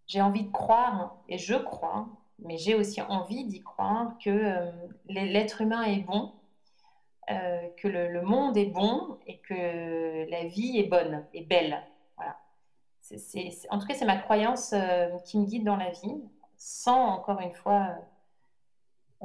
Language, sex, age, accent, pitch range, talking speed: French, female, 30-49, French, 180-215 Hz, 175 wpm